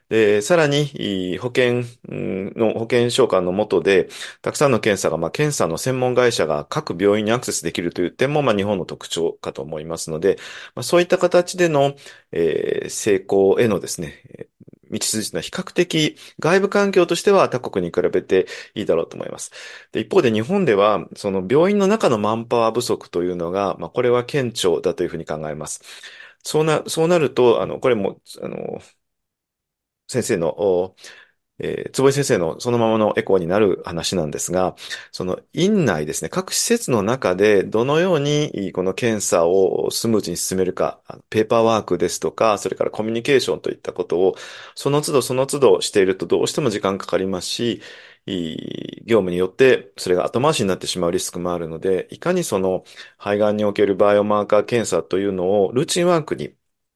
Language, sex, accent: English, male, Japanese